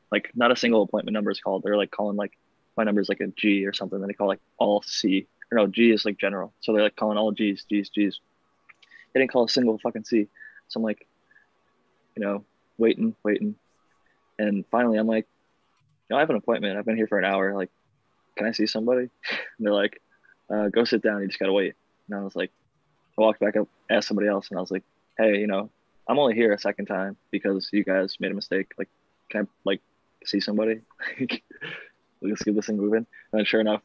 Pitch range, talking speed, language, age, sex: 100-110 Hz, 235 wpm, English, 20-39, male